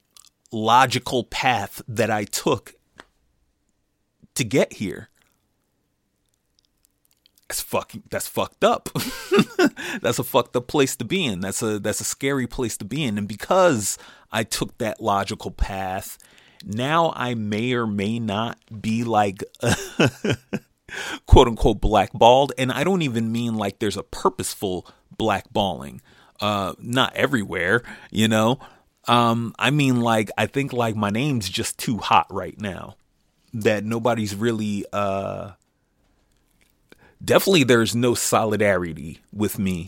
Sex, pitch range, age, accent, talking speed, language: male, 100-120 Hz, 30-49, American, 130 wpm, English